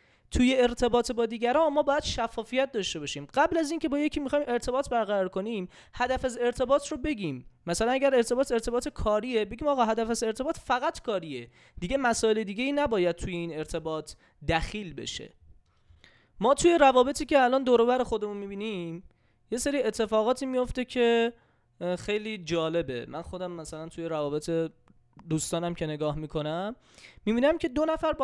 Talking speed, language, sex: 160 wpm, Persian, male